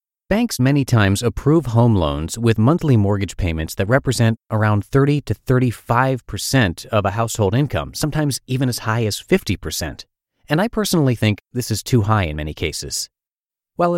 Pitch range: 95-130 Hz